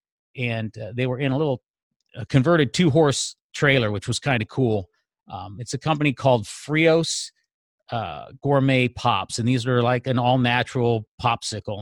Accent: American